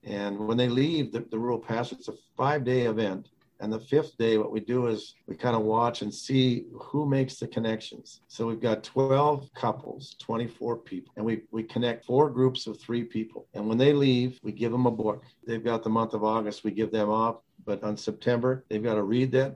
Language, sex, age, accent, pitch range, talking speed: English, male, 50-69, American, 110-130 Hz, 225 wpm